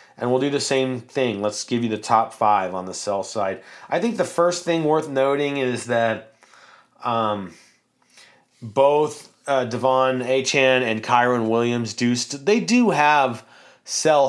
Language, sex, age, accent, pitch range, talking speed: English, male, 30-49, American, 115-150 Hz, 160 wpm